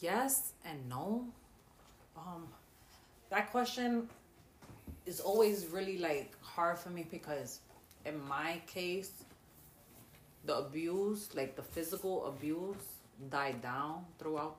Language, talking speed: English, 105 wpm